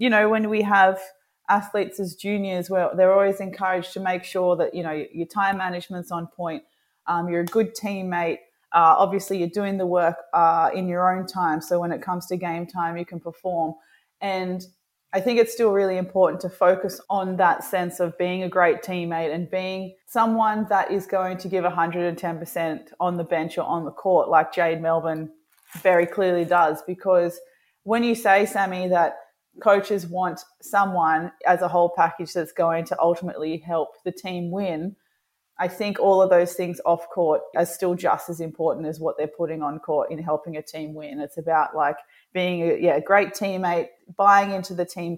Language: English